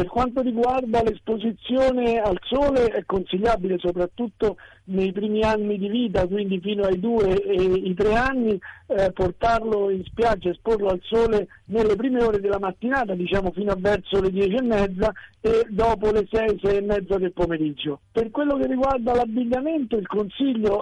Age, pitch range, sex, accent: 50-69, 195-230 Hz, male, native